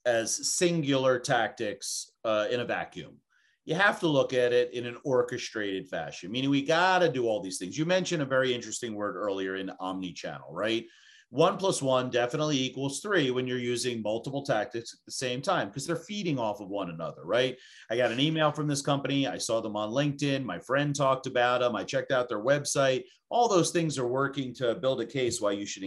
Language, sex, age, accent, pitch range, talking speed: English, male, 40-59, American, 120-150 Hz, 215 wpm